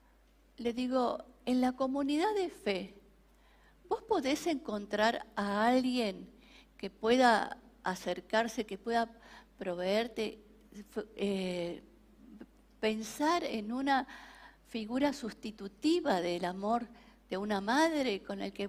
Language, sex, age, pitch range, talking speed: Spanish, female, 50-69, 205-260 Hz, 105 wpm